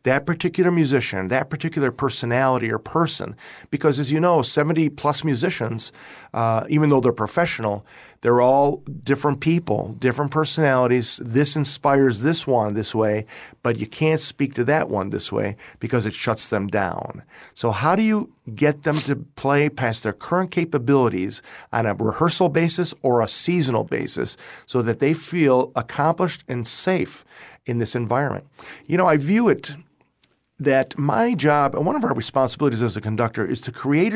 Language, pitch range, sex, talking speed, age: English, 115-160 Hz, male, 165 wpm, 50-69